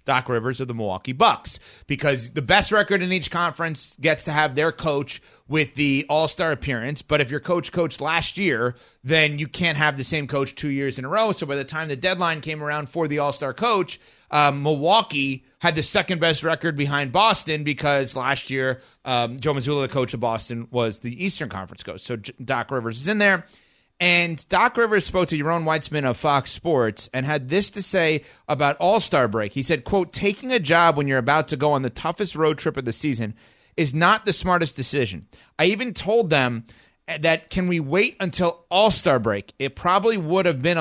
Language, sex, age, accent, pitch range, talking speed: English, male, 30-49, American, 135-175 Hz, 205 wpm